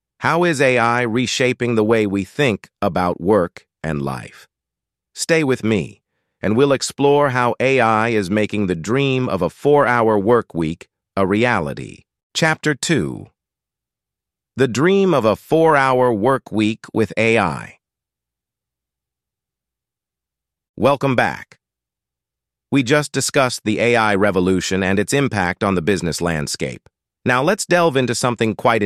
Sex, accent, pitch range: male, American, 95-135 Hz